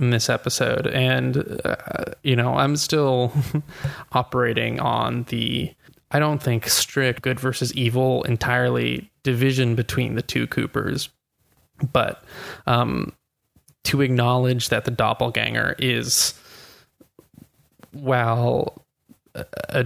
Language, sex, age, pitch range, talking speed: English, male, 20-39, 120-135 Hz, 105 wpm